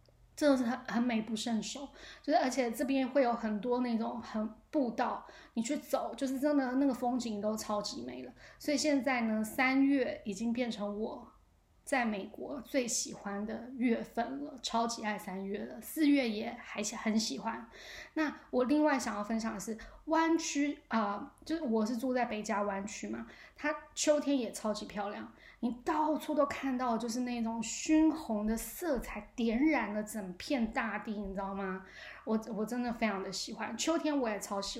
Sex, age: female, 10-29